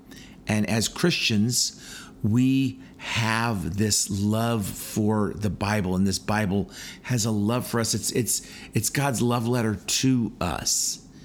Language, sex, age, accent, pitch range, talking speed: English, male, 50-69, American, 90-110 Hz, 135 wpm